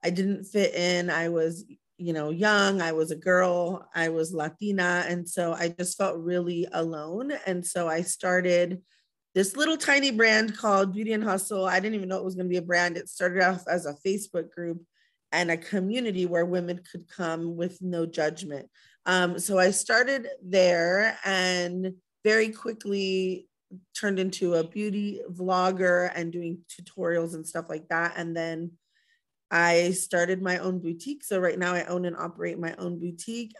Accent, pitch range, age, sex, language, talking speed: American, 170-190 Hz, 30-49, female, English, 180 wpm